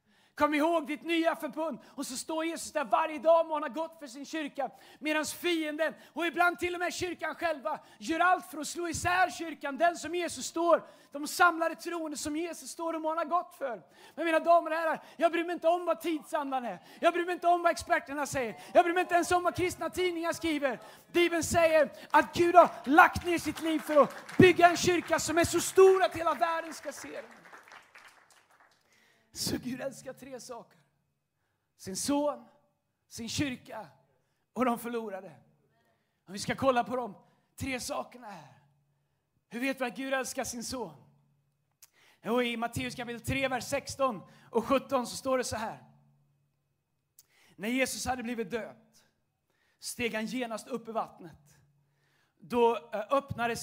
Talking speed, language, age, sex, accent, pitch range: 180 wpm, Swedish, 30-49, male, native, 230-330 Hz